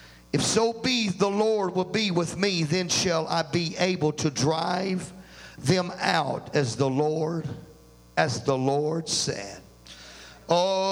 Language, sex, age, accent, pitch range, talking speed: English, male, 50-69, American, 175-220 Hz, 145 wpm